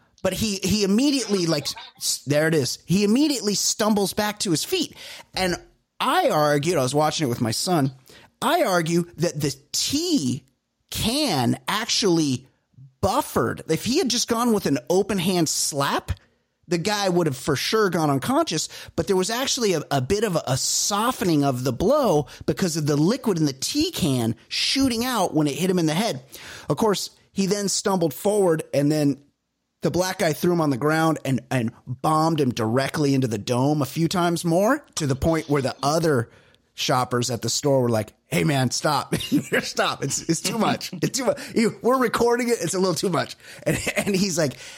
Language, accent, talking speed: English, American, 195 wpm